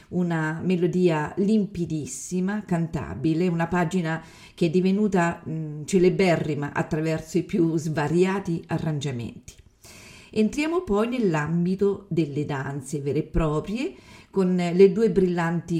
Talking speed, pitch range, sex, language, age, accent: 105 wpm, 150-185 Hz, female, Italian, 50-69, native